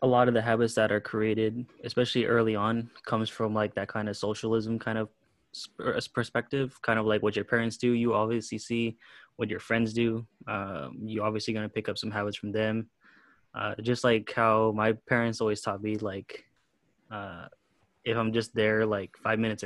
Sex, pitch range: male, 105-115 Hz